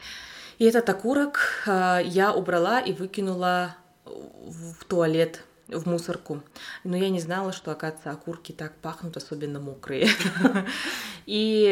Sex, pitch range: female, 165-225 Hz